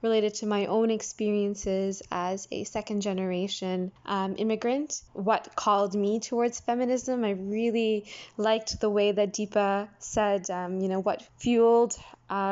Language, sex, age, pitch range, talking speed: English, female, 20-39, 195-225 Hz, 140 wpm